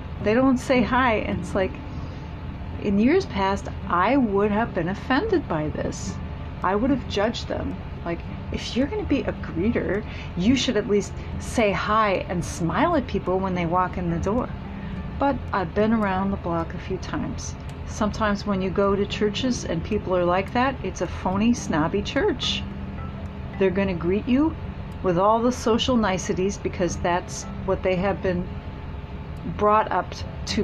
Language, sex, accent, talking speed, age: English, female, American, 175 wpm, 40-59